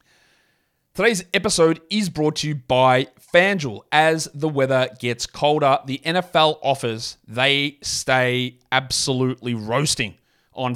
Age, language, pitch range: 30-49, English, 130-170 Hz